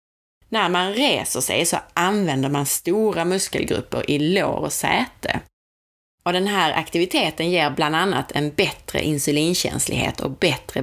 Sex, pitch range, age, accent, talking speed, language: female, 145-195 Hz, 30-49, native, 140 wpm, Swedish